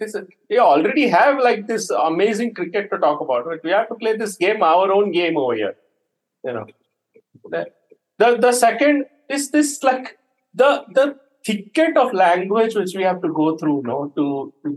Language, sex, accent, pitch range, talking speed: English, male, Indian, 160-255 Hz, 190 wpm